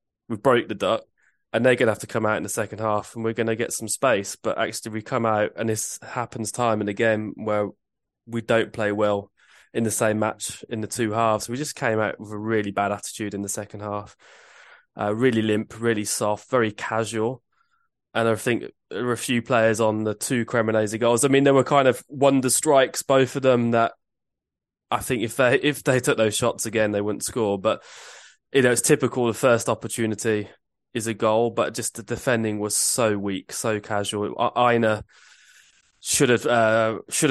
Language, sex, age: English, male, 20-39